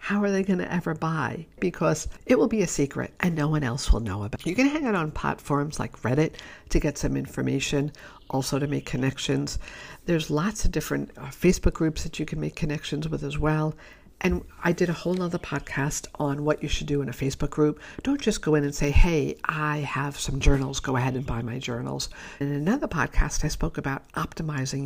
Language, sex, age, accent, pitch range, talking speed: English, female, 60-79, American, 140-175 Hz, 220 wpm